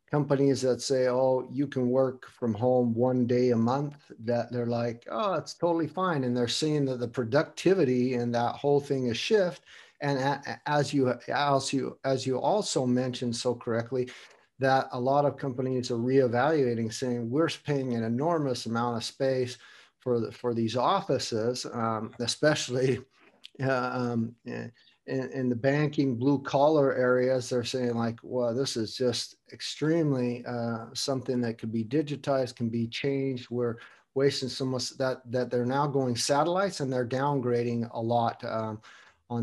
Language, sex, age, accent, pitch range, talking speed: English, male, 50-69, American, 120-140 Hz, 165 wpm